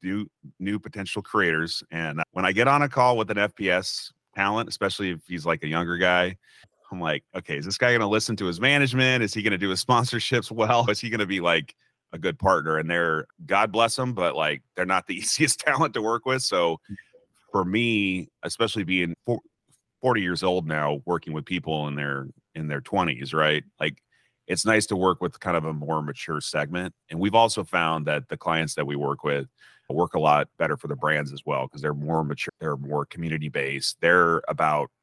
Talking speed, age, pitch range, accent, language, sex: 210 wpm, 30-49, 75-105 Hz, American, English, male